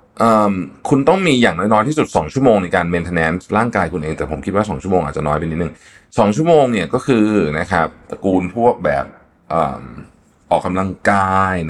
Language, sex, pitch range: Thai, male, 80-105 Hz